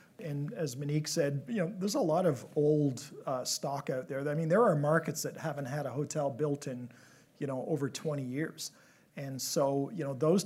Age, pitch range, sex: 40-59, 145-165 Hz, male